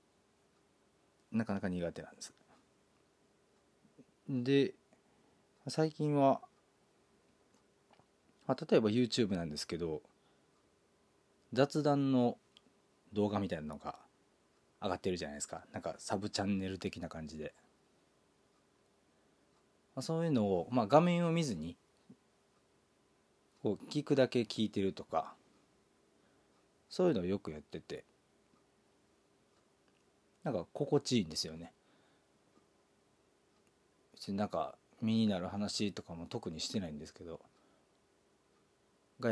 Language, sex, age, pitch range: Japanese, male, 40-59, 95-140 Hz